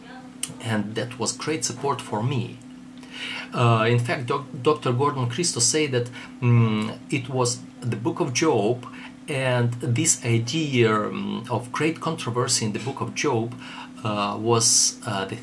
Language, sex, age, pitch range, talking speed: Russian, male, 40-59, 110-135 Hz, 150 wpm